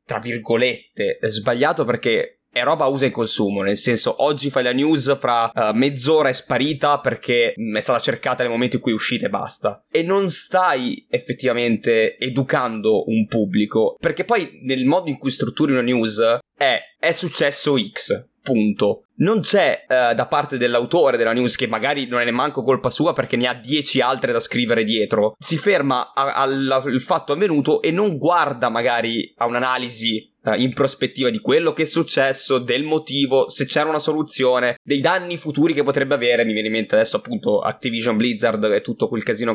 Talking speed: 185 wpm